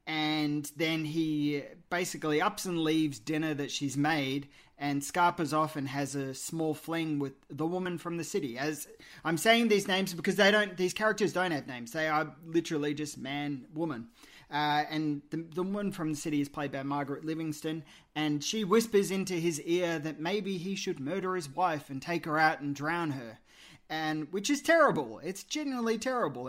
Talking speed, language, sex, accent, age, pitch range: 190 wpm, English, male, Australian, 20-39, 145-185 Hz